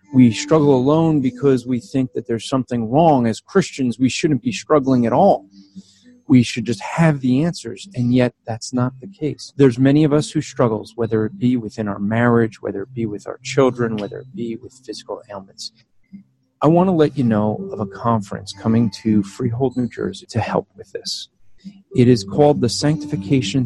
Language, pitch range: English, 115-145 Hz